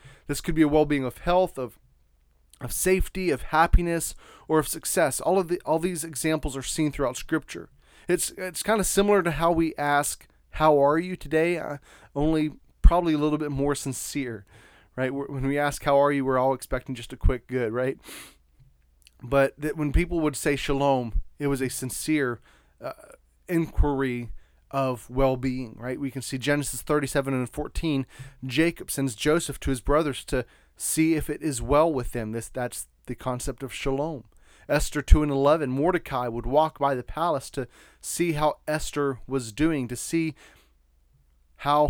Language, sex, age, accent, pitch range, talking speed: English, male, 30-49, American, 130-160 Hz, 175 wpm